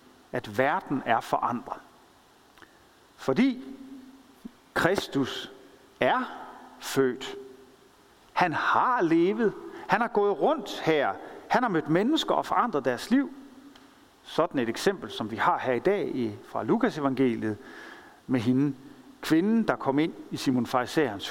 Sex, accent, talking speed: male, native, 125 wpm